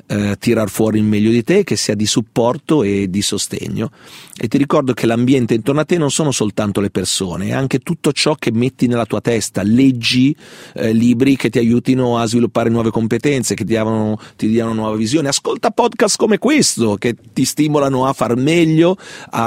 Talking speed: 190 wpm